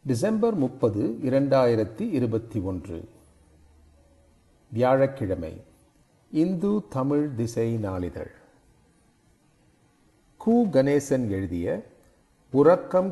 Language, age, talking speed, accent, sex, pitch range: Tamil, 40-59, 65 wpm, native, male, 105-150 Hz